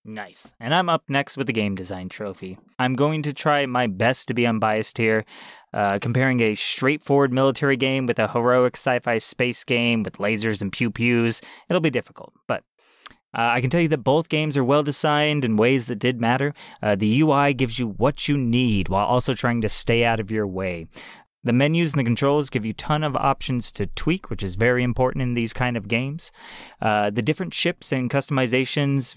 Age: 30-49